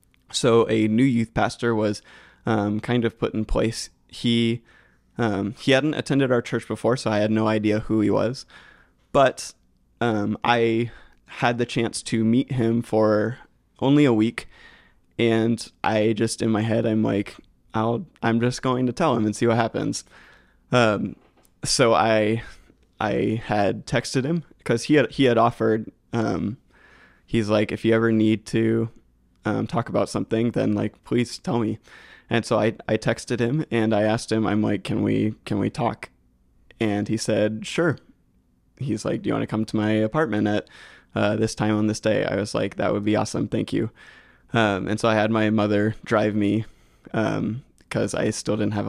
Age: 20-39